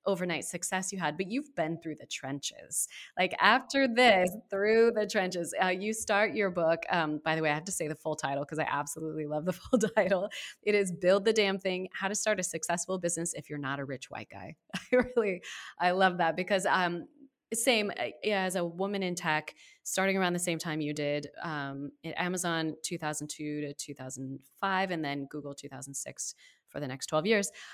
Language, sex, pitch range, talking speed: English, female, 150-195 Hz, 205 wpm